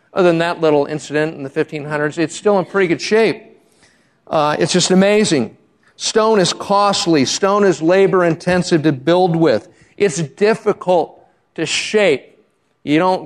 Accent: American